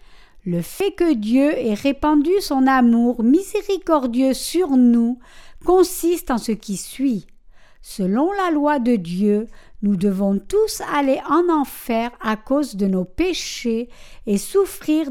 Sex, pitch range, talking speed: female, 215-310 Hz, 135 wpm